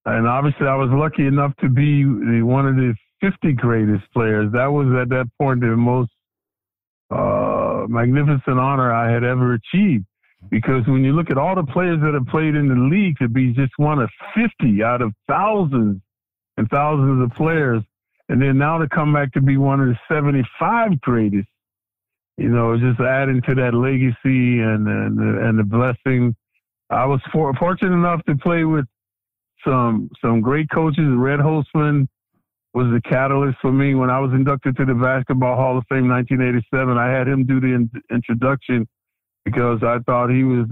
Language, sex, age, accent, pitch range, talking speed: English, male, 50-69, American, 120-140 Hz, 180 wpm